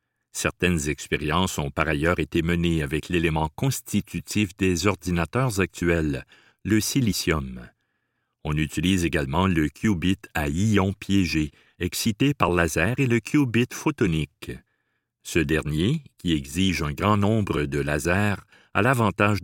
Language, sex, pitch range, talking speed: French, male, 85-120 Hz, 125 wpm